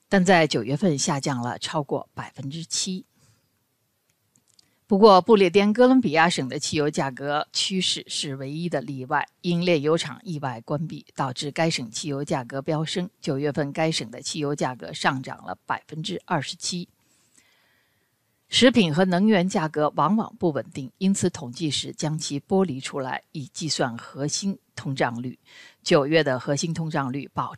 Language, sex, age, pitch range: Chinese, female, 50-69, 140-190 Hz